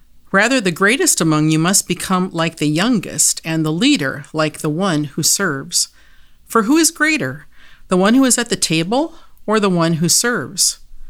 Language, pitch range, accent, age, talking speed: English, 150-210 Hz, American, 50-69, 185 wpm